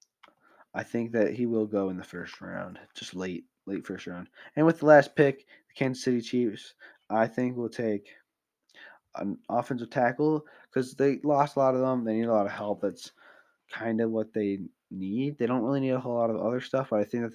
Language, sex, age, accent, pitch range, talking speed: English, male, 20-39, American, 110-140 Hz, 220 wpm